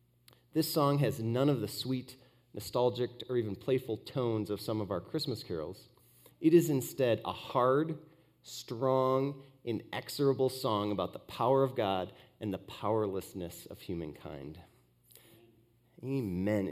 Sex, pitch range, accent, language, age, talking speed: male, 105-135 Hz, American, English, 30-49, 135 wpm